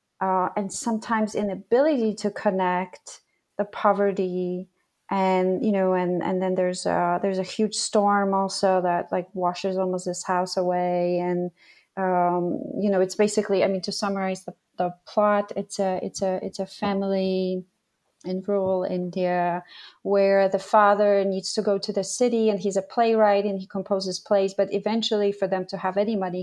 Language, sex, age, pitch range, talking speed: English, female, 30-49, 185-205 Hz, 175 wpm